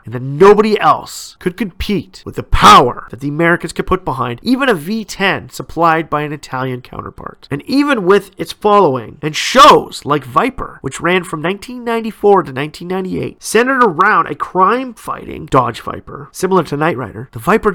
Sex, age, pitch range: male, 40-59, 140-205 Hz